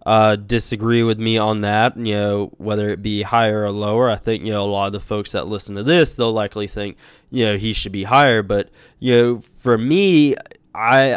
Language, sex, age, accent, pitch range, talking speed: English, male, 20-39, American, 105-125 Hz, 225 wpm